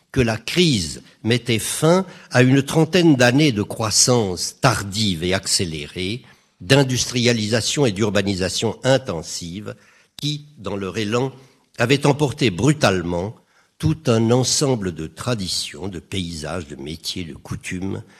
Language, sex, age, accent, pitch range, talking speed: French, male, 60-79, French, 95-135 Hz, 120 wpm